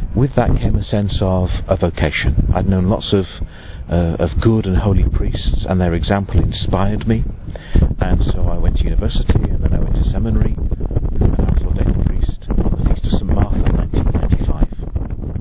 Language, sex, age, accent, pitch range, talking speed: English, male, 50-69, British, 85-105 Hz, 190 wpm